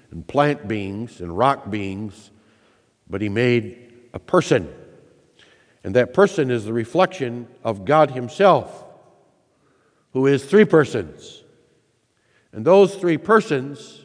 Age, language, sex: 60-79, English, male